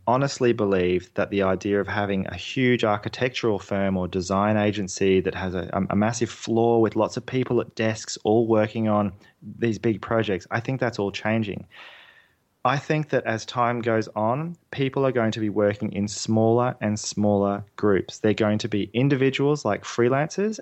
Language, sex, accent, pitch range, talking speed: English, male, Australian, 105-125 Hz, 180 wpm